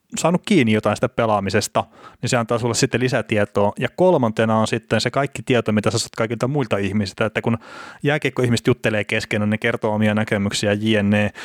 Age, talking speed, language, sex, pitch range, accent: 30-49, 185 wpm, Finnish, male, 105-125 Hz, native